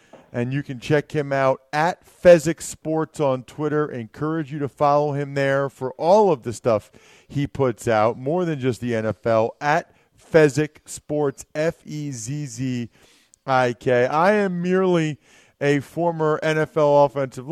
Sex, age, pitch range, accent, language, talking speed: male, 40-59, 130-165 Hz, American, English, 140 wpm